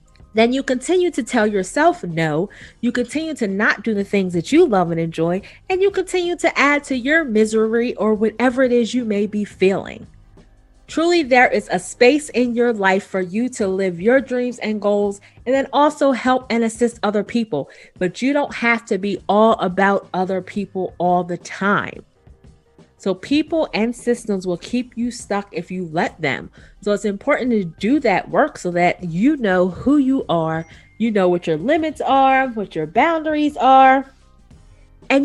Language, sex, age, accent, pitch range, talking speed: English, female, 30-49, American, 185-260 Hz, 185 wpm